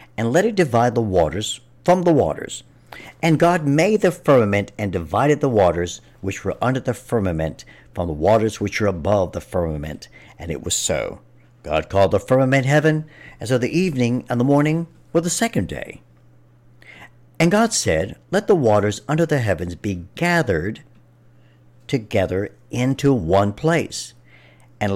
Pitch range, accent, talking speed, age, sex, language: 95-135 Hz, American, 160 wpm, 60-79, male, English